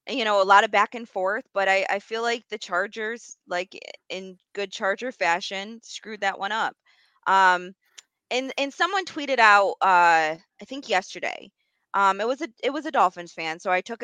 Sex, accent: female, American